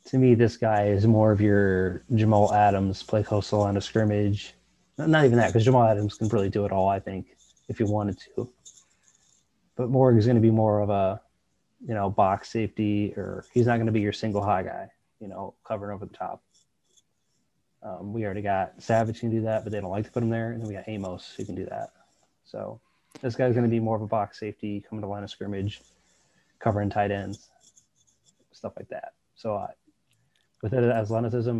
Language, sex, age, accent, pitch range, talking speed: English, male, 20-39, American, 100-115 Hz, 215 wpm